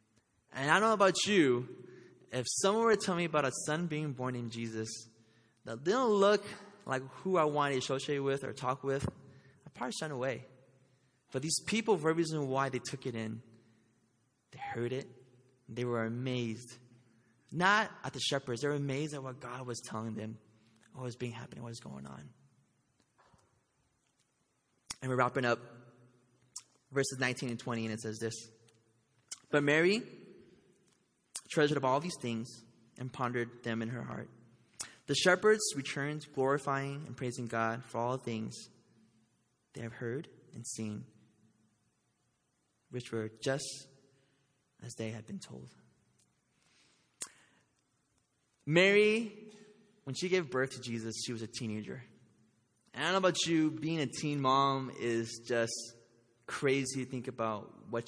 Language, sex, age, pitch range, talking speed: English, male, 20-39, 115-140 Hz, 155 wpm